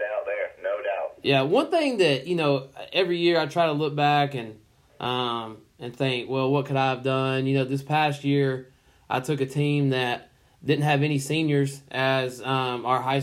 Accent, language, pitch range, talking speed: American, English, 130-145 Hz, 185 wpm